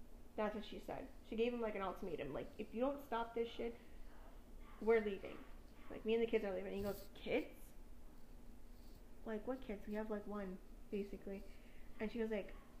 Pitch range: 195-225 Hz